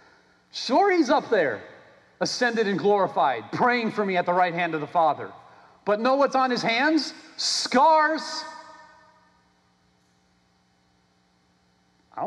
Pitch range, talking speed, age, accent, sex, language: 150-210 Hz, 120 wpm, 40-59, American, male, English